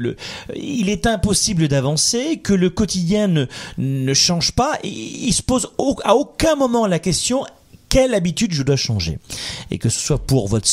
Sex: male